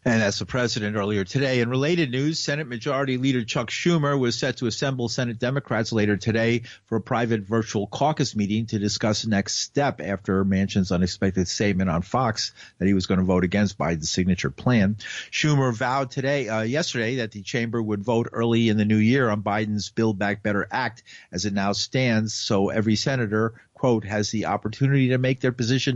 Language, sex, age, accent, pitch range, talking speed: English, male, 50-69, American, 105-130 Hz, 195 wpm